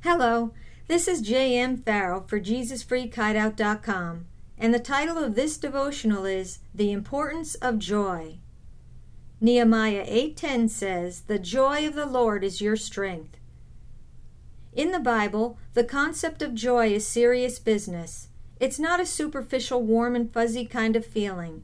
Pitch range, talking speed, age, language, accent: 210-265 Hz, 135 wpm, 50-69, English, American